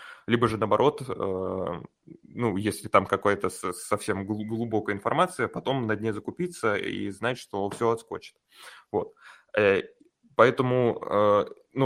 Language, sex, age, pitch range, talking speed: Russian, male, 20-39, 105-145 Hz, 110 wpm